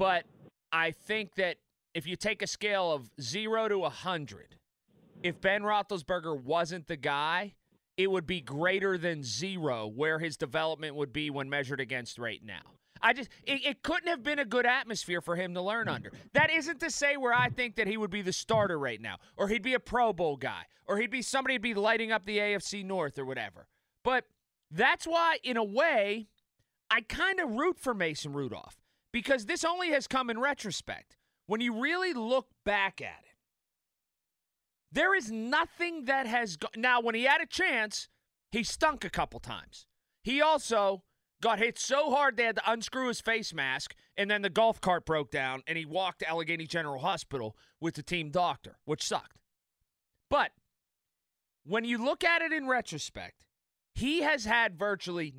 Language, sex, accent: English, male, American